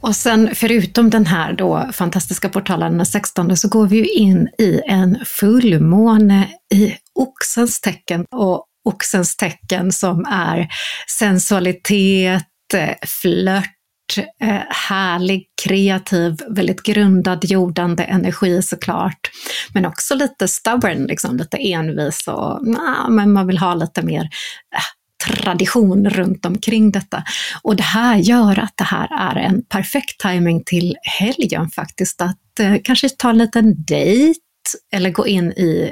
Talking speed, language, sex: 130 wpm, Swedish, female